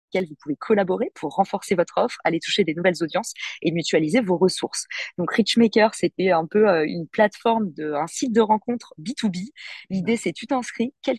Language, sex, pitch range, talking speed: French, female, 165-205 Hz, 190 wpm